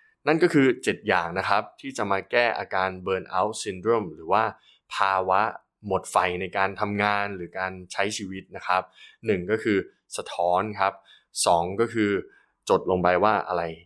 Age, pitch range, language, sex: 20-39, 90-110 Hz, Thai, male